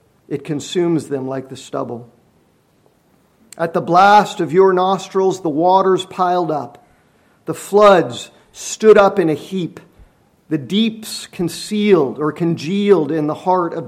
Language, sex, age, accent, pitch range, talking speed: English, male, 50-69, American, 145-190 Hz, 140 wpm